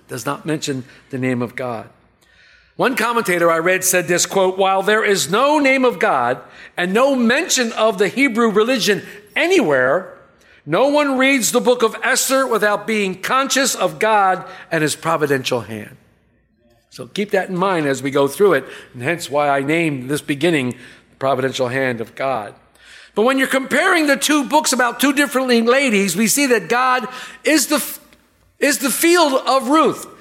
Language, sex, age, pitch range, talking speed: English, male, 50-69, 180-270 Hz, 175 wpm